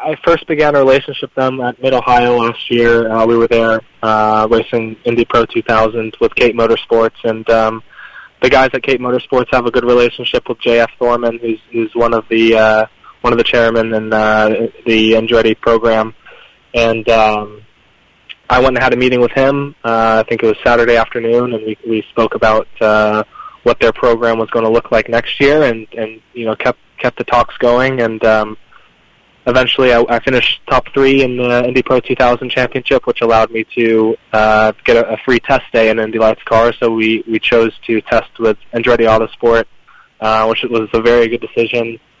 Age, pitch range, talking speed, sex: 20-39, 110-120 Hz, 200 wpm, male